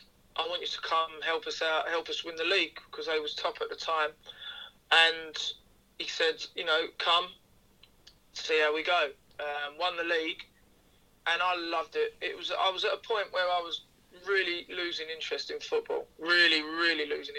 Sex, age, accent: male, 20-39, British